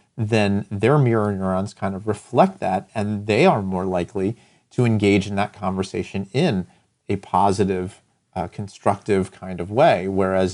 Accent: American